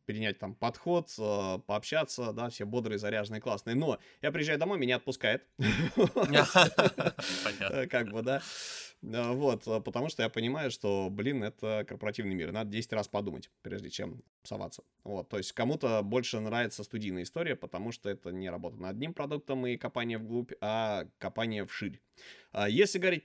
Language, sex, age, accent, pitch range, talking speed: Russian, male, 20-39, native, 105-130 Hz, 155 wpm